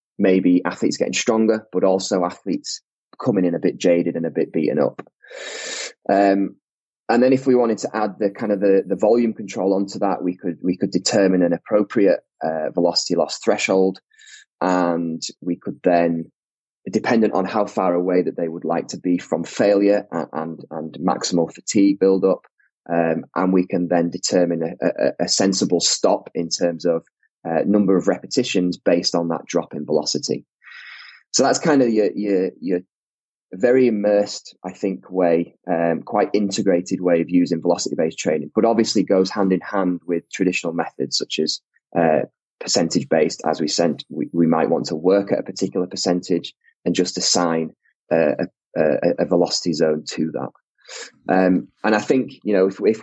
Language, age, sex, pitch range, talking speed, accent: English, 20-39, male, 85-100 Hz, 180 wpm, British